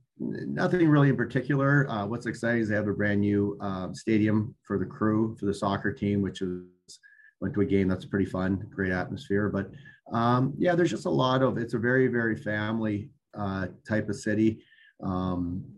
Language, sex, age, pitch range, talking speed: English, male, 30-49, 95-115 Hz, 195 wpm